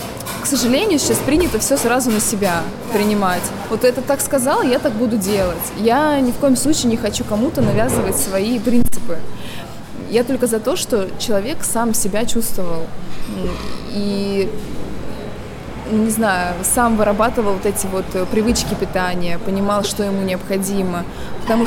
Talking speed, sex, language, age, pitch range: 140 wpm, female, Russian, 20-39, 205-270 Hz